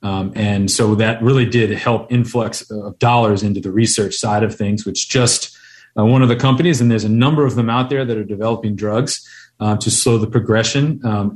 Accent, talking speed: American, 215 wpm